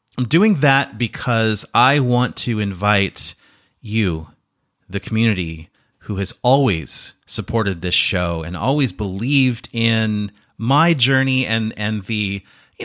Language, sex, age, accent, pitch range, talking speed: English, male, 30-49, American, 95-130 Hz, 125 wpm